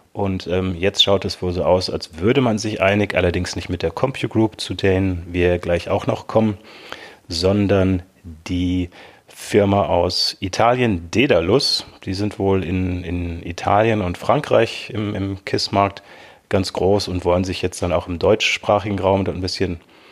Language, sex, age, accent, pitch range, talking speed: German, male, 30-49, German, 90-105 Hz, 165 wpm